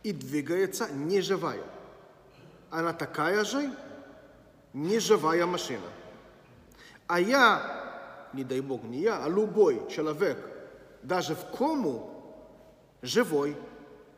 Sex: male